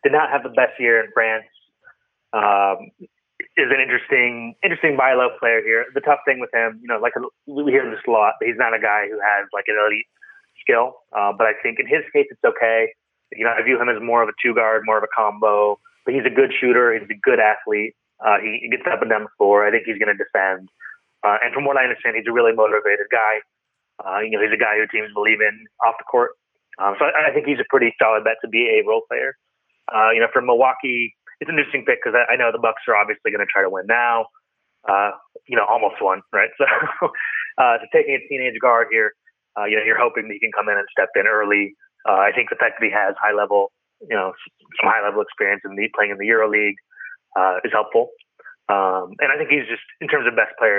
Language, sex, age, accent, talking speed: English, male, 30-49, American, 250 wpm